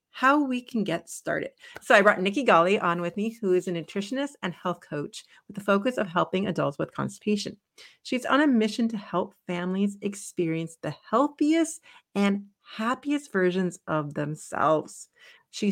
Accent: American